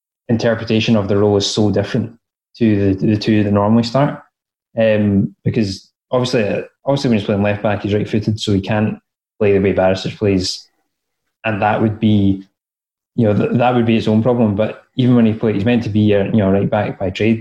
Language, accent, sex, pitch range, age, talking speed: English, British, male, 100-115 Hz, 20-39, 220 wpm